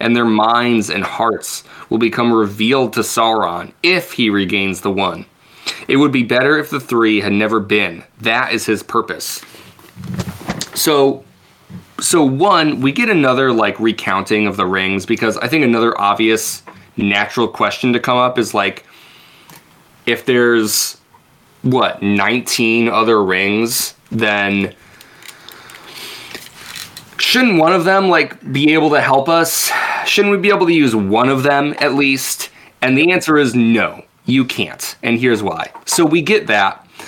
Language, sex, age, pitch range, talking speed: English, male, 20-39, 105-140 Hz, 150 wpm